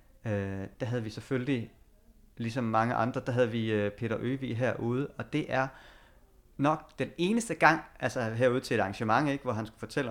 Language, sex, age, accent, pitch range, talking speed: Danish, male, 30-49, native, 110-135 Hz, 190 wpm